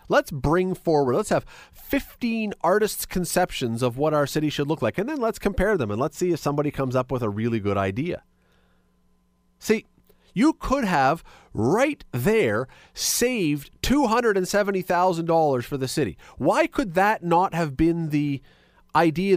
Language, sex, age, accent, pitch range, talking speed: English, male, 40-59, American, 130-205 Hz, 160 wpm